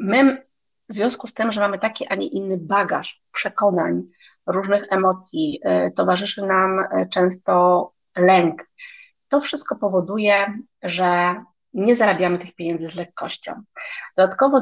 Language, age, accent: Polish, 30-49, native